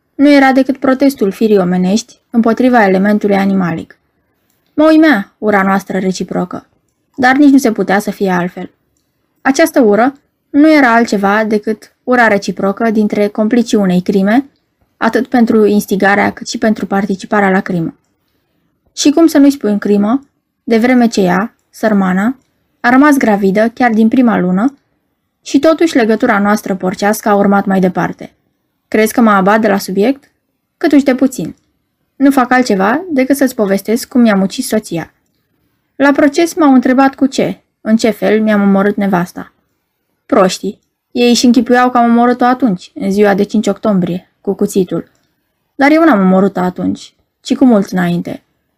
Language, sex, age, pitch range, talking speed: Romanian, female, 20-39, 200-260 Hz, 155 wpm